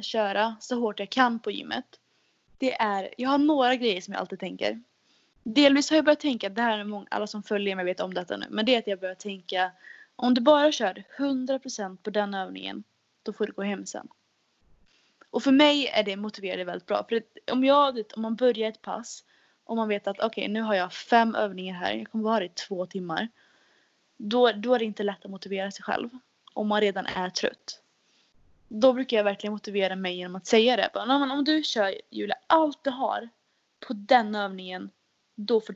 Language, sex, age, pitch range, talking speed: Swedish, female, 20-39, 200-250 Hz, 215 wpm